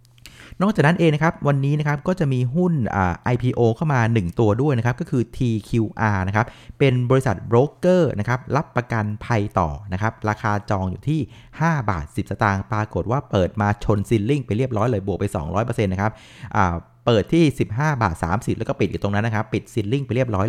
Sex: male